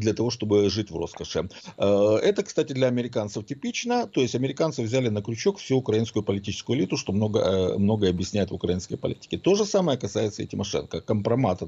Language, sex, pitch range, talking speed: Russian, male, 100-165 Hz, 180 wpm